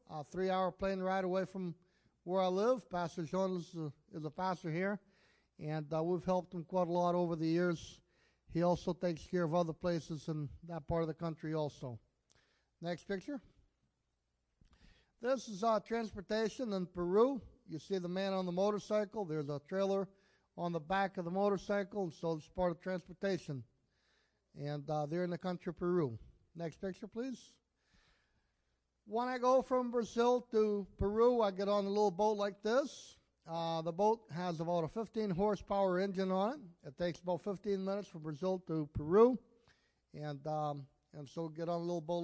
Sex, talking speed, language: male, 175 wpm, English